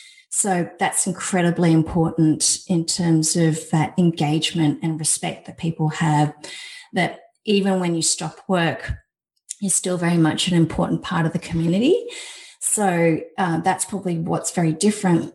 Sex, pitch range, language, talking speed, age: female, 165-190 Hz, English, 145 wpm, 30-49